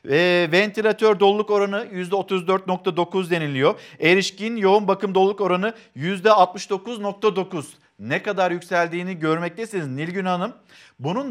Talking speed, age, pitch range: 100 wpm, 50-69, 165-205 Hz